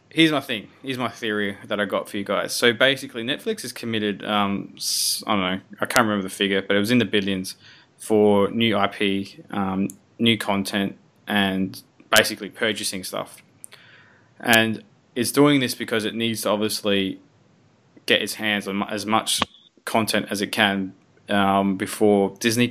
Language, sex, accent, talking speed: English, male, Australian, 170 wpm